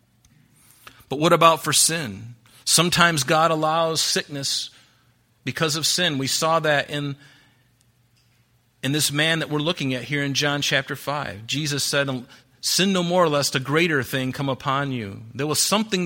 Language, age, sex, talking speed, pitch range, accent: English, 40-59, male, 160 wpm, 130-160 Hz, American